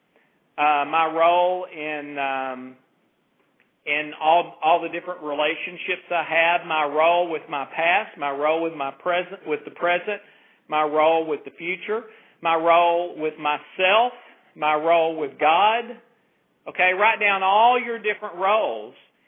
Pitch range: 155-200 Hz